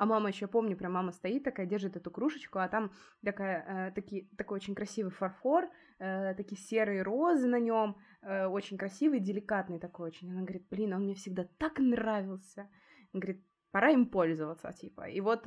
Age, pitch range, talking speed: 20-39, 175-220 Hz, 185 wpm